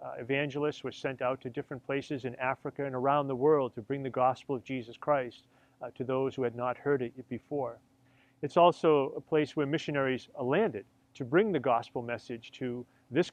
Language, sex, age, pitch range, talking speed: English, male, 40-59, 130-150 Hz, 205 wpm